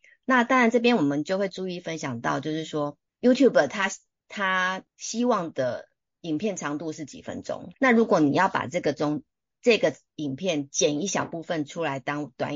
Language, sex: Chinese, female